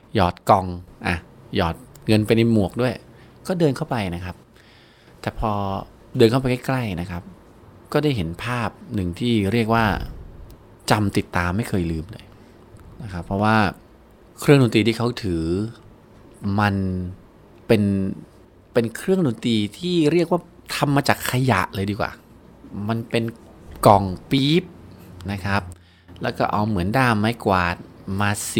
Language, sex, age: Thai, male, 20-39